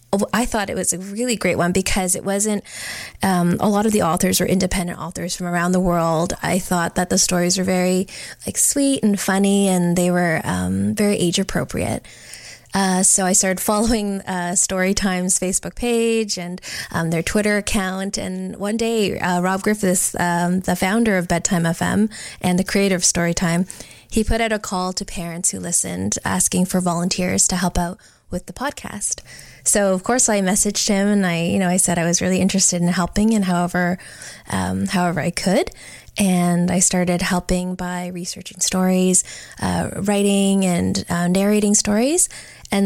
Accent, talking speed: American, 180 wpm